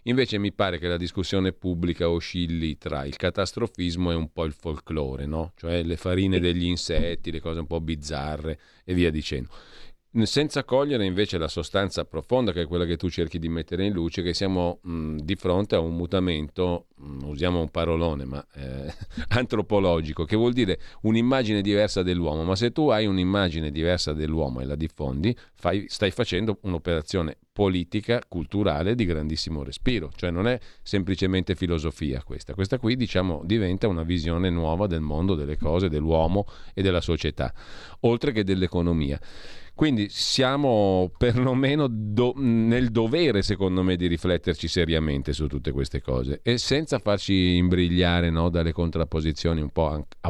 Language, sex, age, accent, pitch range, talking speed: Italian, male, 40-59, native, 80-100 Hz, 160 wpm